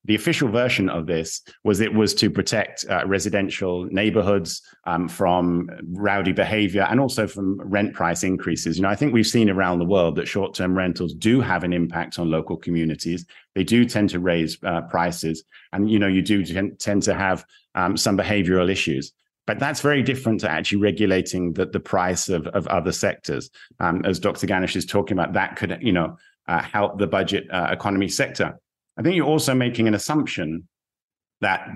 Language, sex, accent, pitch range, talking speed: English, male, British, 90-110 Hz, 195 wpm